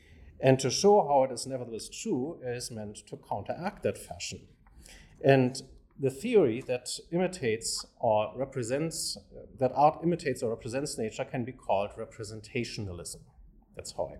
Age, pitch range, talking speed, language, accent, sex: 50-69, 110-140 Hz, 145 wpm, English, German, male